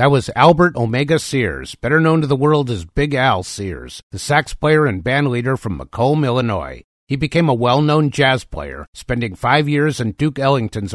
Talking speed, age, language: 185 wpm, 50-69, English